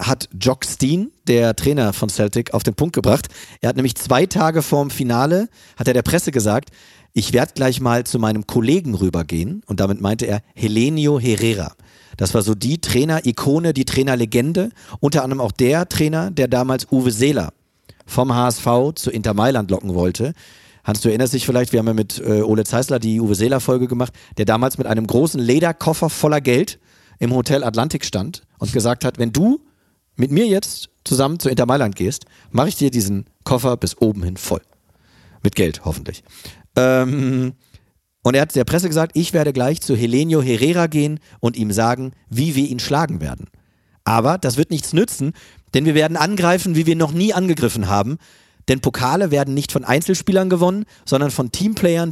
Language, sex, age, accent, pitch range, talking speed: German, male, 40-59, German, 115-150 Hz, 185 wpm